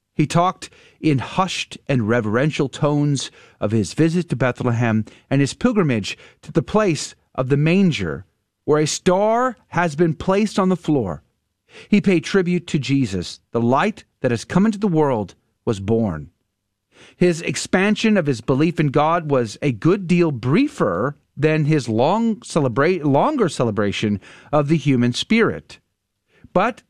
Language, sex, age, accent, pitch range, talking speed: English, male, 40-59, American, 125-190 Hz, 150 wpm